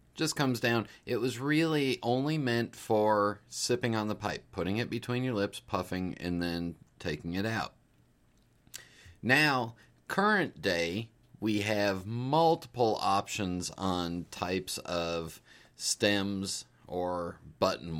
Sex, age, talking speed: male, 30-49, 125 wpm